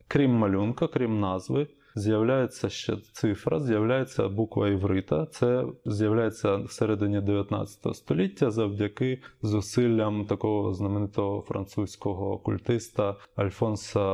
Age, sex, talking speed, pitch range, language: 20-39, male, 100 wpm, 100-130 Hz, Ukrainian